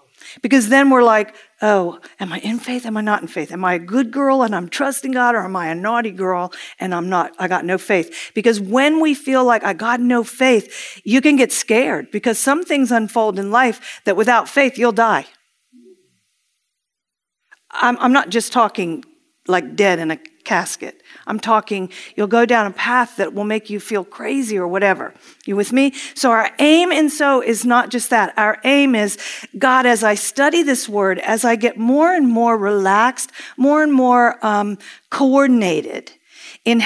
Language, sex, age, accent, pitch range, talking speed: English, female, 50-69, American, 210-270 Hz, 195 wpm